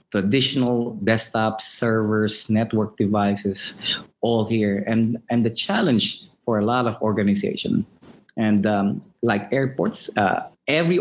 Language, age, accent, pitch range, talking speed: English, 20-39, Filipino, 110-125 Hz, 120 wpm